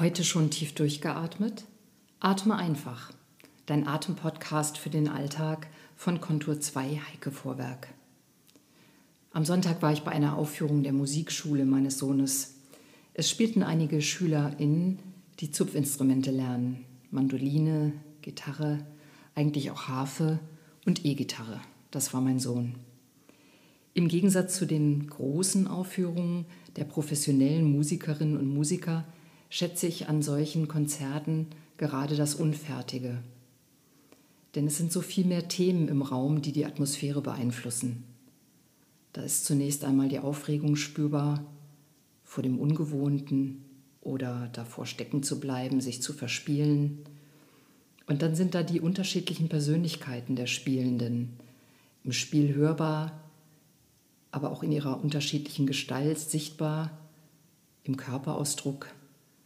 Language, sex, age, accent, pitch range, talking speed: German, female, 50-69, German, 135-155 Hz, 115 wpm